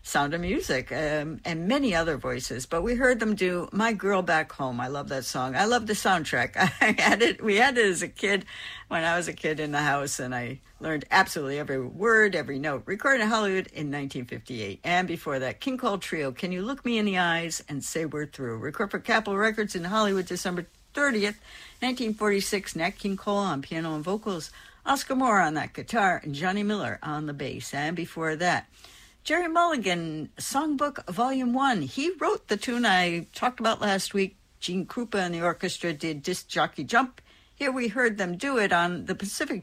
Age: 60-79